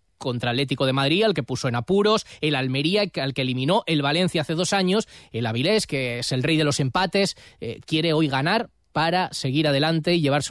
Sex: male